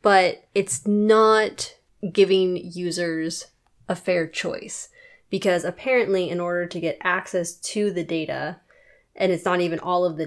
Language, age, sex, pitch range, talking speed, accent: English, 20-39, female, 170-190 Hz, 145 wpm, American